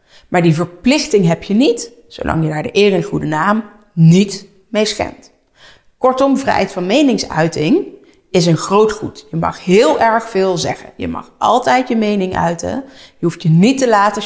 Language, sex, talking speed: Dutch, female, 180 wpm